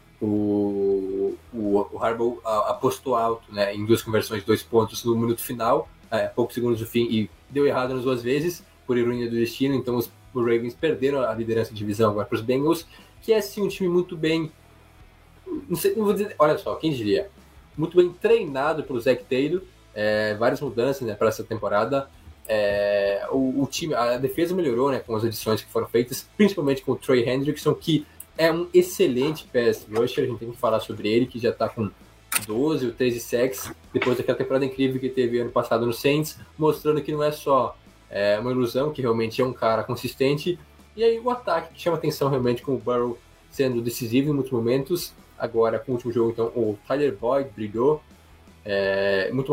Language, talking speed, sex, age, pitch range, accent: Portuguese, 195 wpm, male, 20-39, 110-140 Hz, Brazilian